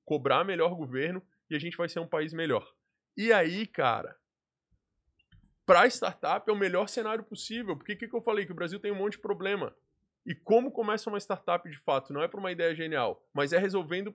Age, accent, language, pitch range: 20-39, Brazilian, Portuguese, 165-205 Hz